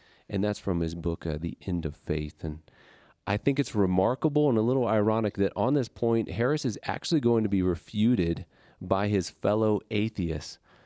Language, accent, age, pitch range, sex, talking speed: English, American, 40-59, 90-110 Hz, male, 190 wpm